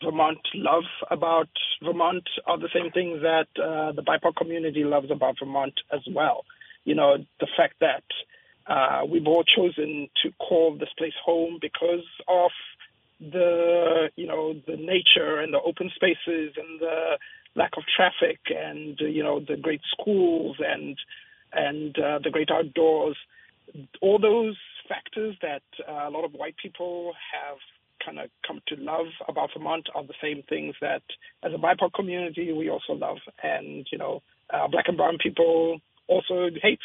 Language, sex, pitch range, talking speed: English, male, 155-185 Hz, 165 wpm